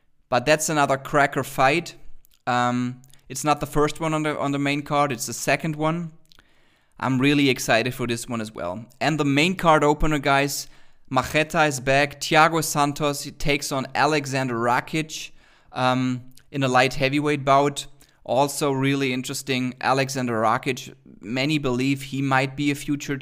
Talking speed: 165 wpm